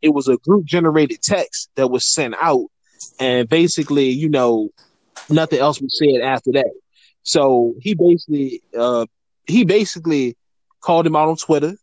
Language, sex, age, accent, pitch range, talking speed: English, male, 20-39, American, 135-175 Hz, 150 wpm